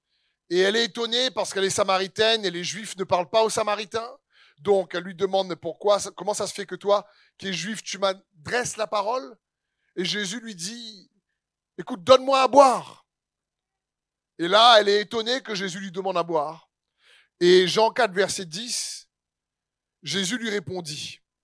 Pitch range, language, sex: 165-215 Hz, French, male